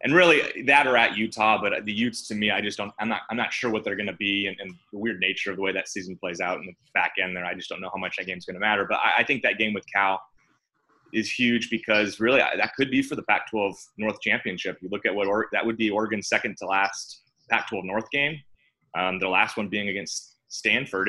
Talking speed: 270 wpm